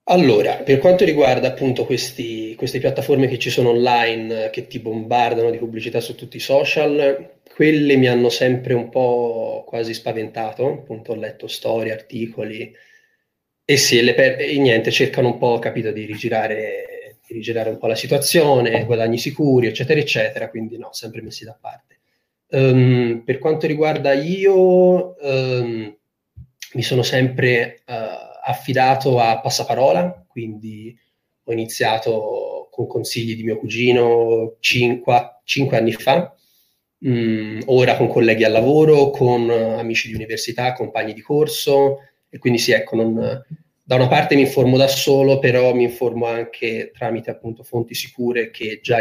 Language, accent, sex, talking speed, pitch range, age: Italian, native, male, 150 wpm, 115-135 Hz, 20-39